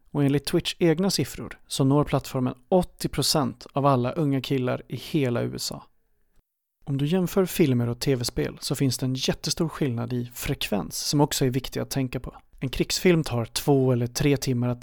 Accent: Swedish